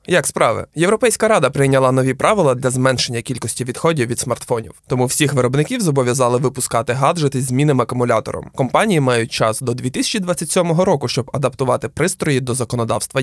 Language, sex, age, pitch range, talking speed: Ukrainian, male, 20-39, 125-155 Hz, 150 wpm